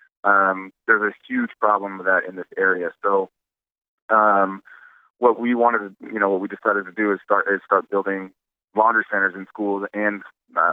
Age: 20-39